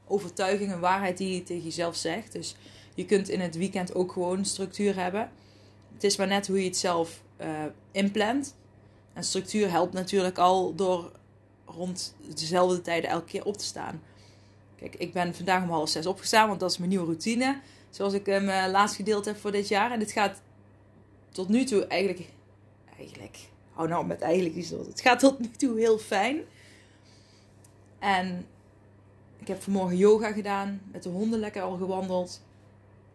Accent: Dutch